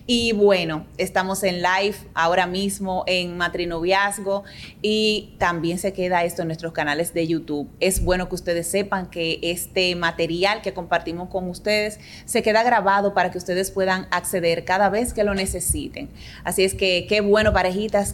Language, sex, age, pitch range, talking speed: Spanish, female, 30-49, 170-200 Hz, 165 wpm